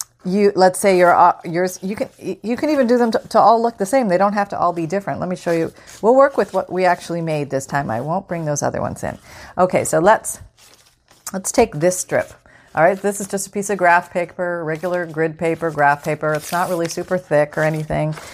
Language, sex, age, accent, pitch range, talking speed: English, female, 40-59, American, 145-200 Hz, 240 wpm